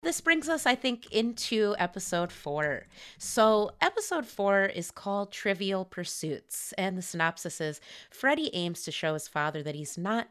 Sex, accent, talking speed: female, American, 165 wpm